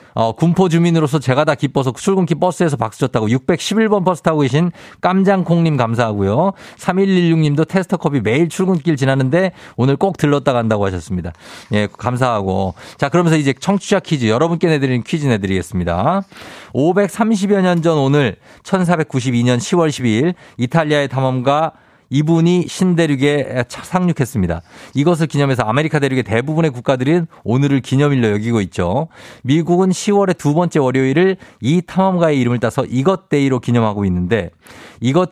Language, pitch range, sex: Korean, 125-170 Hz, male